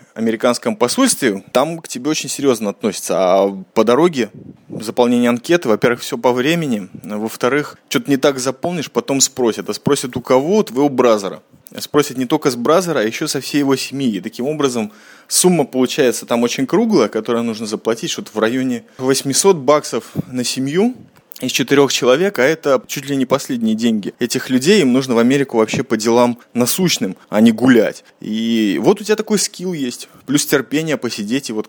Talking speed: 180 wpm